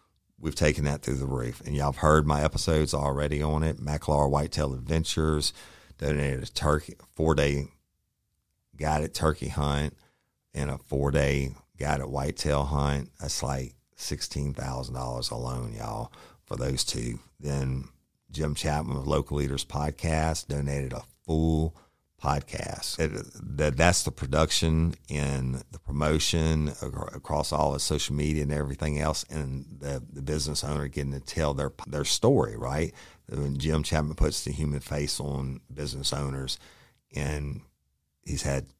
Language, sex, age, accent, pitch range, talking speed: English, male, 50-69, American, 70-75 Hz, 140 wpm